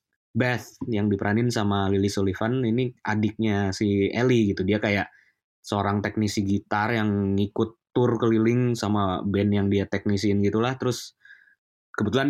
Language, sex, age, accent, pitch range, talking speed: Indonesian, male, 20-39, native, 100-120 Hz, 140 wpm